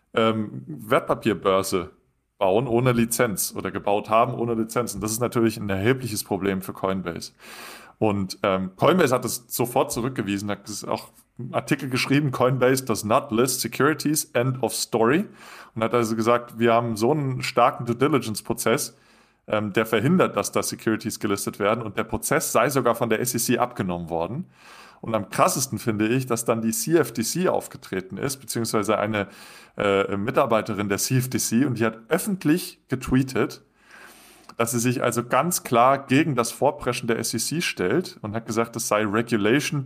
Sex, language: male, German